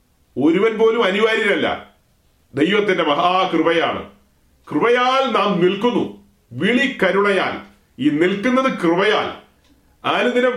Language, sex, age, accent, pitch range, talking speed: Malayalam, male, 40-59, native, 160-215 Hz, 85 wpm